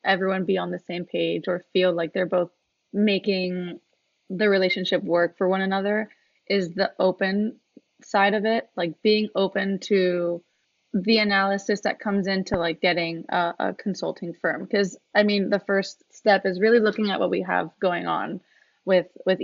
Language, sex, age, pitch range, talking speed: English, female, 20-39, 185-215 Hz, 175 wpm